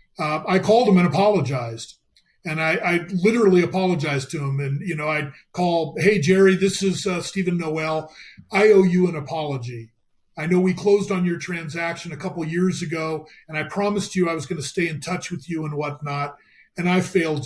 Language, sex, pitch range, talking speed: English, male, 155-190 Hz, 200 wpm